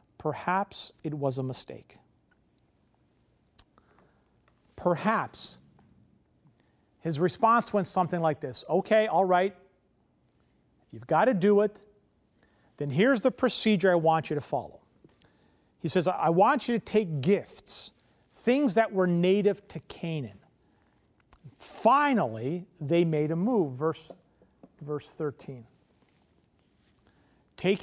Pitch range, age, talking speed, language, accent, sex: 145-215 Hz, 40-59, 115 wpm, English, American, male